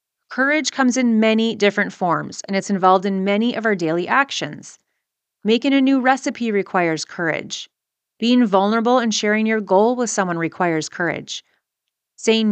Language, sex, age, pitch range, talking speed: English, female, 30-49, 195-245 Hz, 155 wpm